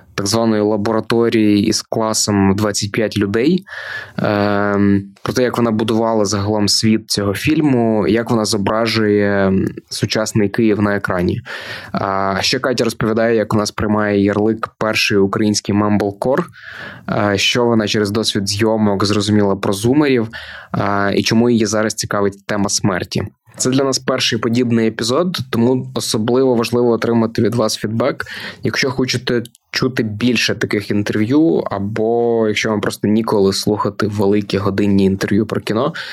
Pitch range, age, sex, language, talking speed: 105-120 Hz, 20-39, male, Ukrainian, 135 wpm